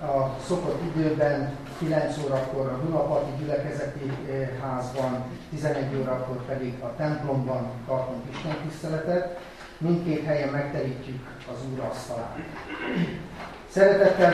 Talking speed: 90 wpm